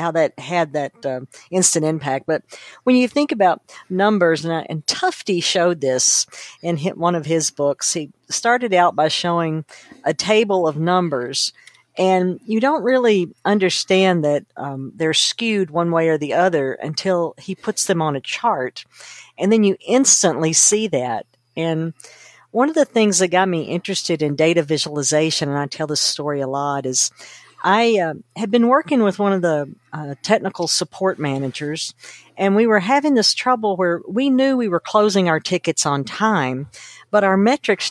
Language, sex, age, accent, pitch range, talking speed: English, female, 50-69, American, 155-220 Hz, 175 wpm